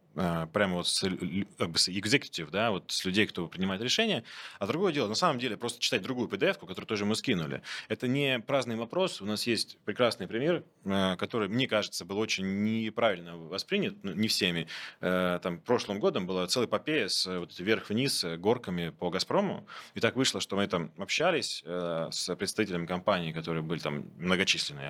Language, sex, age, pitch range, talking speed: Russian, male, 20-39, 90-130 Hz, 170 wpm